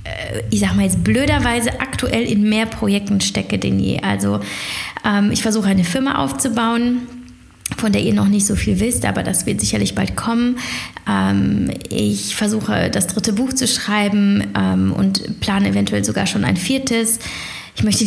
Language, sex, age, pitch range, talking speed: German, female, 20-39, 190-240 Hz, 170 wpm